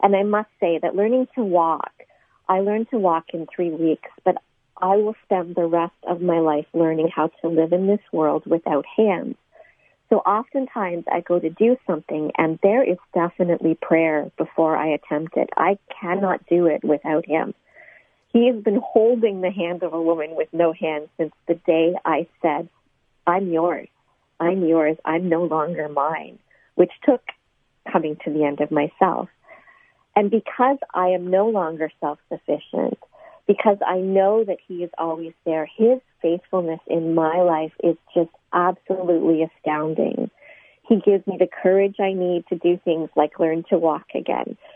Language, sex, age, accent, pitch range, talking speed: English, female, 50-69, American, 165-205 Hz, 170 wpm